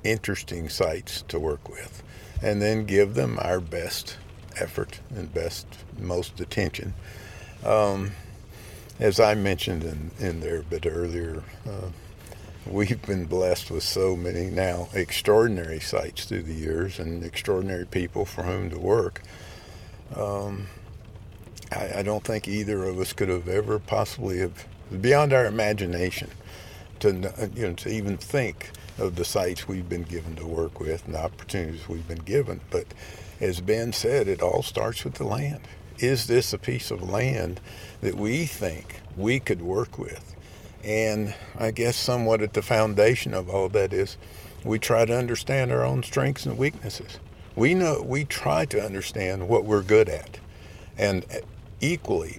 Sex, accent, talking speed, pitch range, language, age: male, American, 155 wpm, 90-110 Hz, English, 50-69